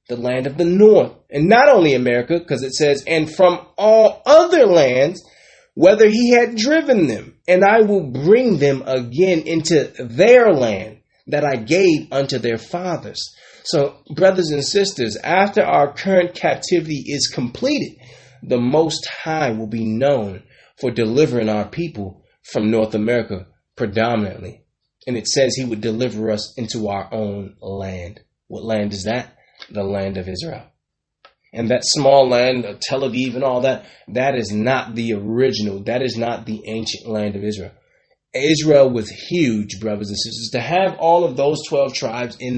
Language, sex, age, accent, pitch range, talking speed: English, male, 30-49, American, 110-180 Hz, 165 wpm